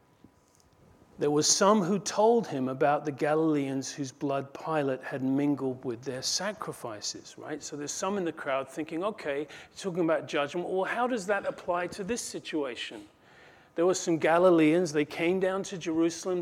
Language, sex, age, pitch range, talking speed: English, male, 40-59, 145-190 Hz, 170 wpm